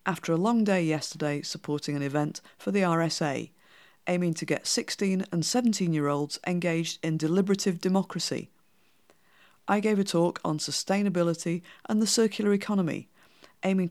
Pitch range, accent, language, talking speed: 160-200 Hz, British, English, 140 wpm